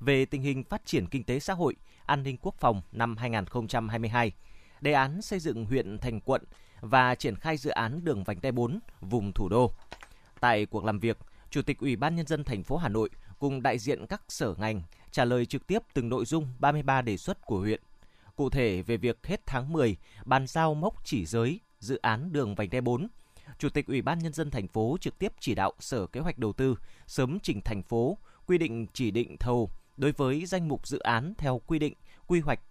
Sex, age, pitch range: male, 20-39, 115-150 Hz